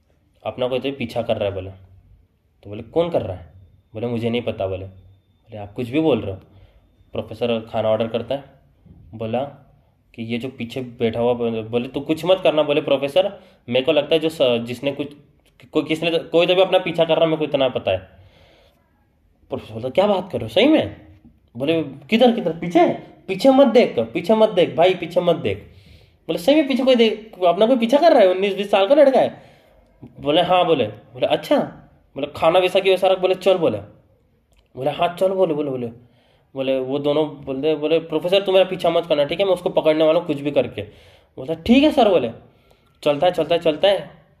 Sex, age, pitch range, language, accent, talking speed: male, 20-39, 115-175 Hz, Hindi, native, 215 wpm